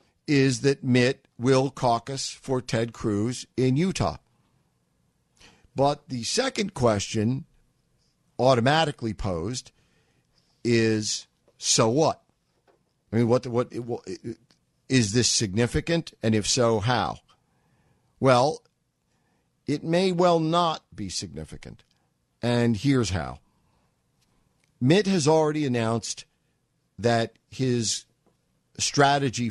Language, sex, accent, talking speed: English, male, American, 100 wpm